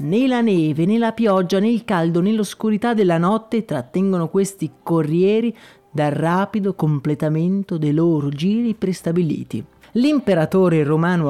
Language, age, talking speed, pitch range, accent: Italian, 30-49, 115 wpm, 150-205 Hz, native